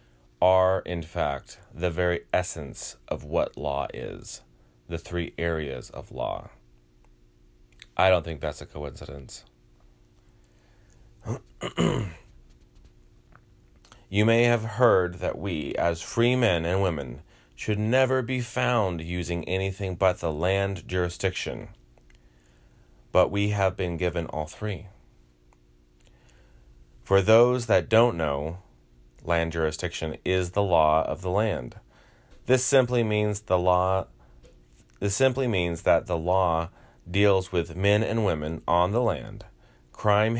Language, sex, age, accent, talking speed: English, male, 30-49, American, 120 wpm